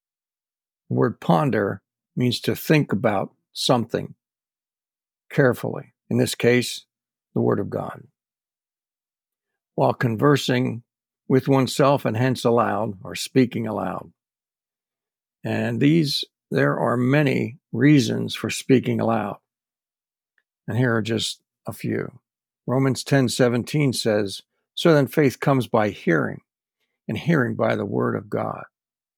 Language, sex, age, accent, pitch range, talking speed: English, male, 60-79, American, 115-145 Hz, 115 wpm